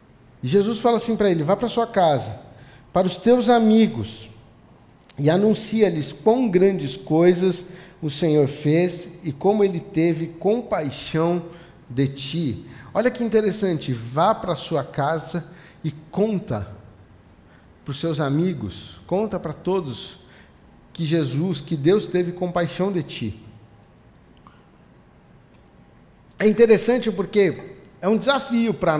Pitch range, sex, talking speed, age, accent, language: 140-195 Hz, male, 125 wpm, 50-69, Brazilian, Portuguese